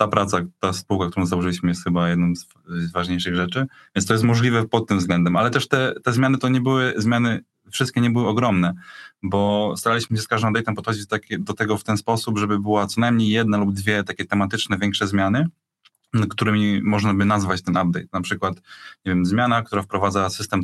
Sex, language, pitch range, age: male, Polish, 90-110 Hz, 20-39